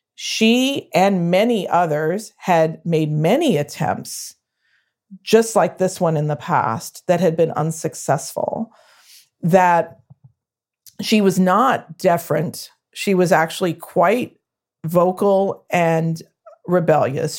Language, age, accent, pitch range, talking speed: English, 40-59, American, 160-200 Hz, 105 wpm